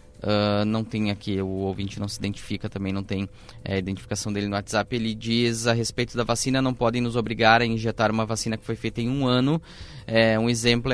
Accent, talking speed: Brazilian, 205 wpm